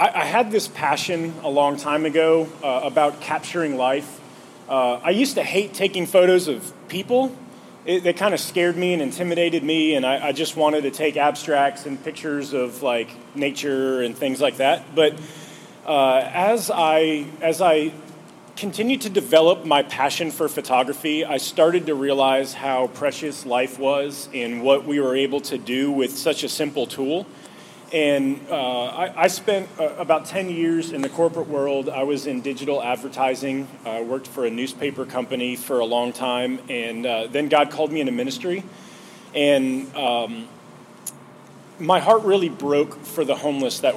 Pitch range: 135-165 Hz